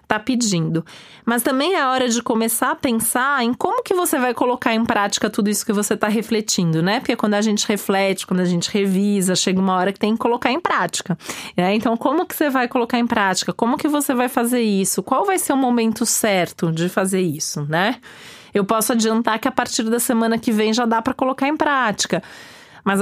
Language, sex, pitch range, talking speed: Portuguese, female, 200-245 Hz, 225 wpm